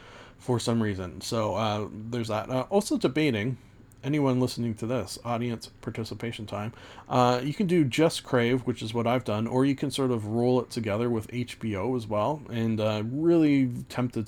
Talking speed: 185 wpm